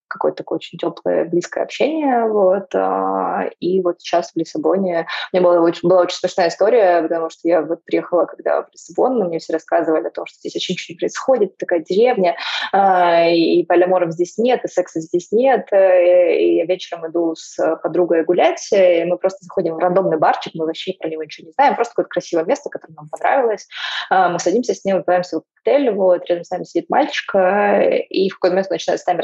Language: Russian